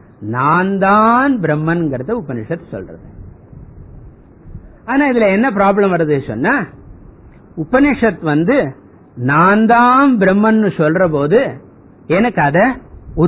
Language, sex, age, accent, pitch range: Tamil, male, 50-69, native, 135-200 Hz